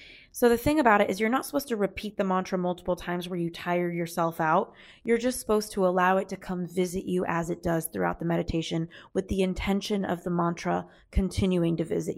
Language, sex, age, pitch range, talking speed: English, female, 20-39, 180-210 Hz, 220 wpm